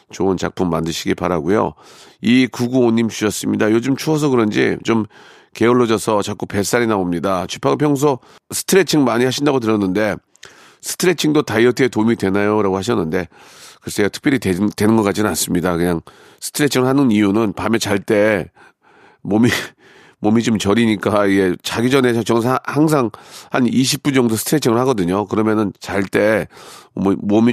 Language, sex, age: Korean, male, 40-59